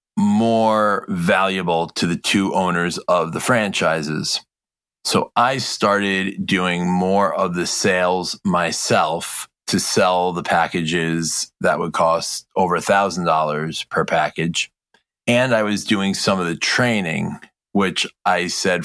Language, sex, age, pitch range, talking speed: English, male, 30-49, 80-95 Hz, 125 wpm